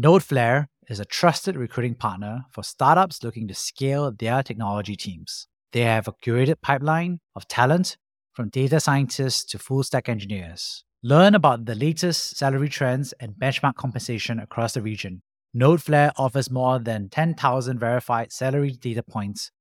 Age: 30-49